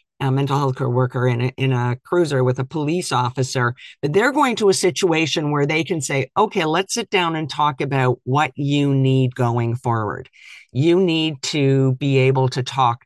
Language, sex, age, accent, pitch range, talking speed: English, male, 50-69, American, 125-145 Hz, 195 wpm